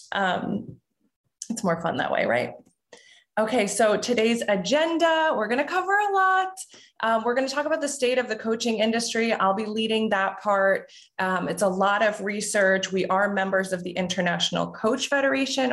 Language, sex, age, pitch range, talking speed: English, female, 20-39, 175-225 Hz, 185 wpm